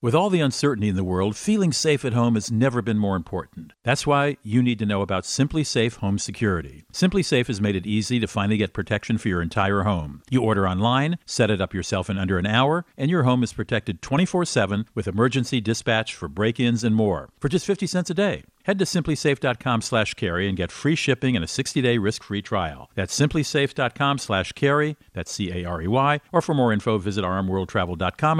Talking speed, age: 205 wpm, 50-69